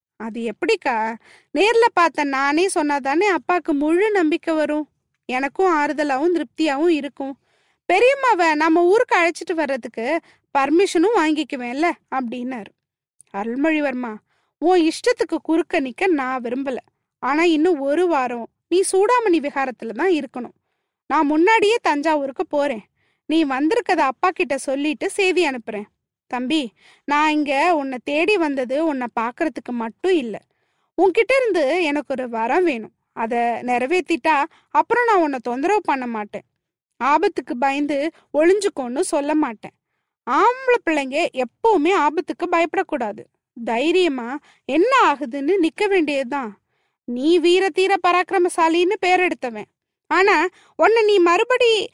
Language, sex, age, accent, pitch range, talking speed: Tamil, female, 20-39, native, 270-365 Hz, 110 wpm